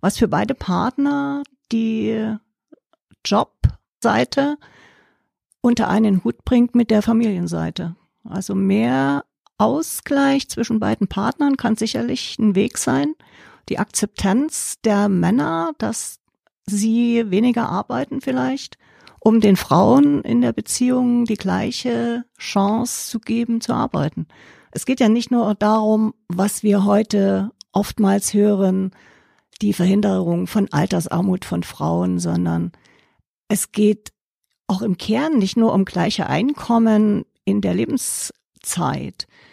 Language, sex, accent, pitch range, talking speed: German, female, German, 190-235 Hz, 115 wpm